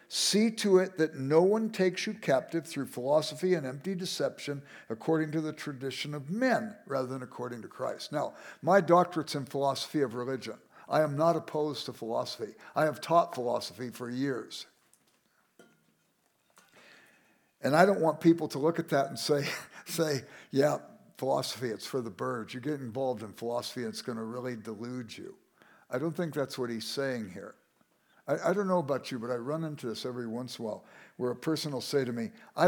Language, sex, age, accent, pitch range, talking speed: English, male, 60-79, American, 125-165 Hz, 190 wpm